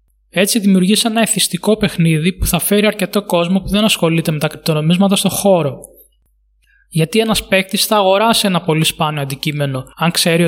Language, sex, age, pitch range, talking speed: Greek, male, 20-39, 165-200 Hz, 165 wpm